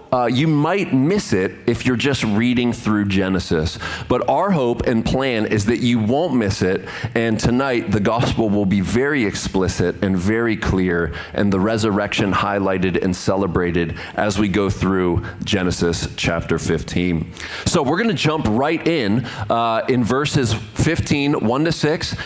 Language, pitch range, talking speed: English, 100-145 Hz, 160 wpm